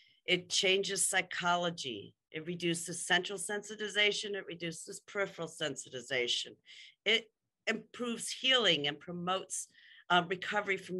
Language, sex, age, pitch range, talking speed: English, female, 50-69, 155-200 Hz, 105 wpm